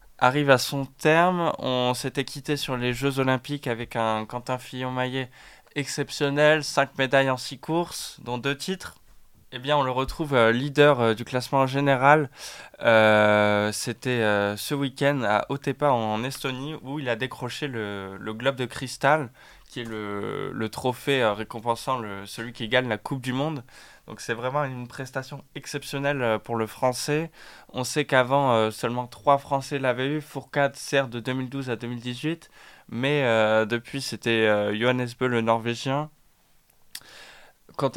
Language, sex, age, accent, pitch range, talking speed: French, male, 20-39, French, 115-140 Hz, 165 wpm